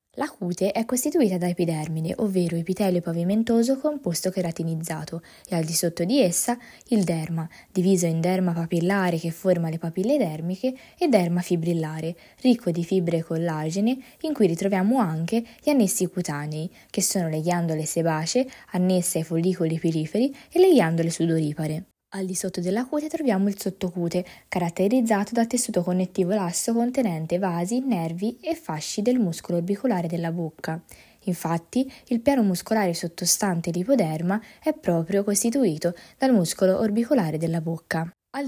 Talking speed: 145 wpm